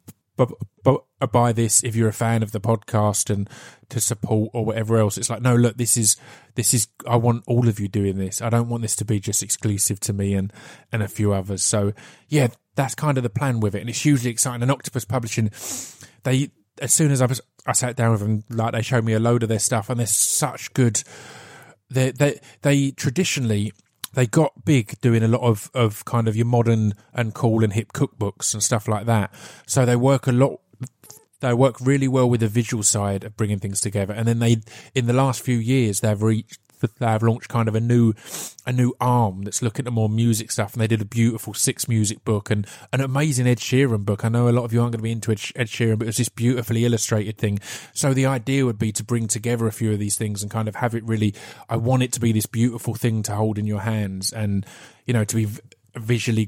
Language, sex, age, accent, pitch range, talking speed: English, male, 20-39, British, 110-125 Hz, 240 wpm